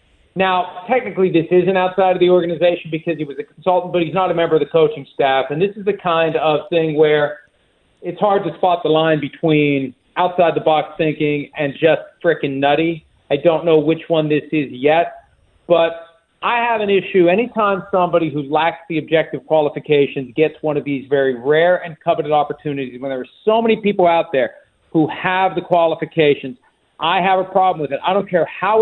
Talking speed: 195 wpm